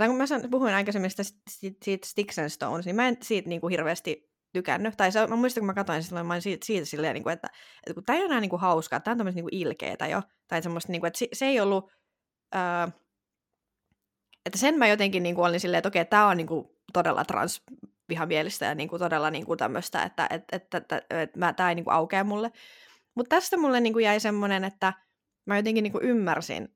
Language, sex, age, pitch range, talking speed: Finnish, female, 20-39, 170-215 Hz, 205 wpm